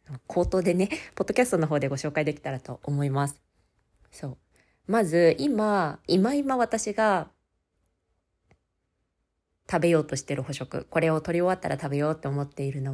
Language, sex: Japanese, female